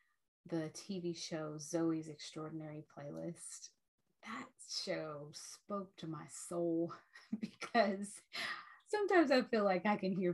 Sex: female